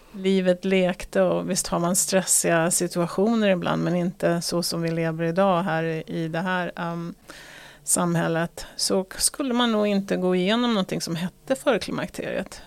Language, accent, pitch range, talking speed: Swedish, native, 175-215 Hz, 155 wpm